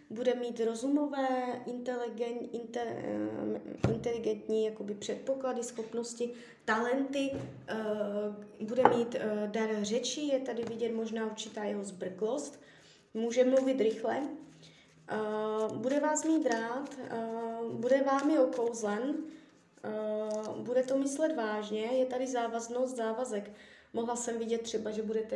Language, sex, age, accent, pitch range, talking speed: Czech, female, 20-39, native, 215-260 Hz, 100 wpm